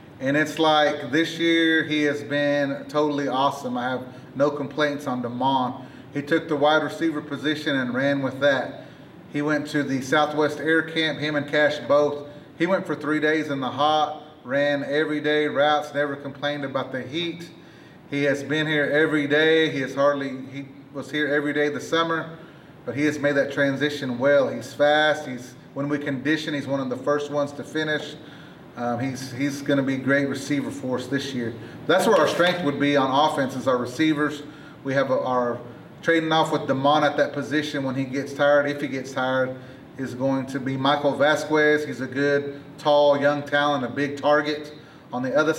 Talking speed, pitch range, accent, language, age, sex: 195 wpm, 135-150 Hz, American, English, 30-49, male